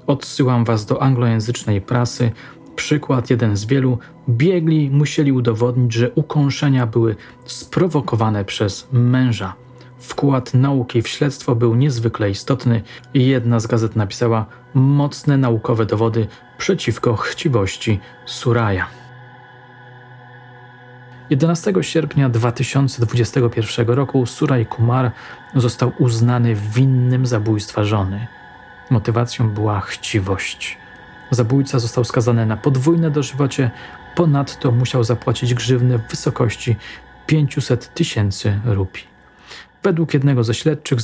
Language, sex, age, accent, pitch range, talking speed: Polish, male, 40-59, native, 115-140 Hz, 100 wpm